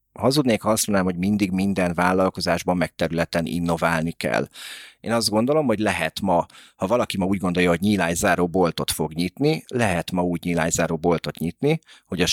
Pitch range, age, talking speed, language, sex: 85-100 Hz, 40-59, 170 wpm, Hungarian, male